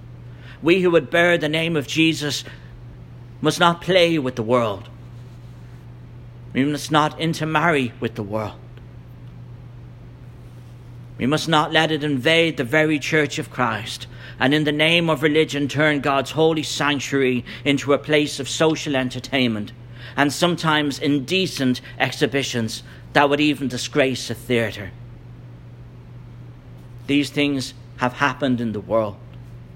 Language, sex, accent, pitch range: English, male, British, 120-145 Hz